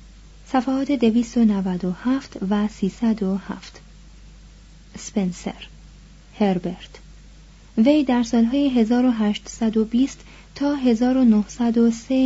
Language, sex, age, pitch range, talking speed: Persian, female, 30-49, 195-245 Hz, 60 wpm